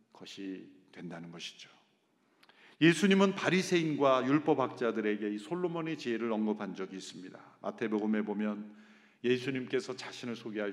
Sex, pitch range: male, 145-215 Hz